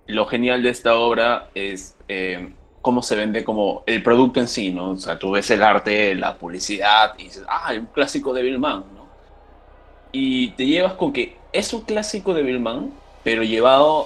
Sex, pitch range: male, 100-130 Hz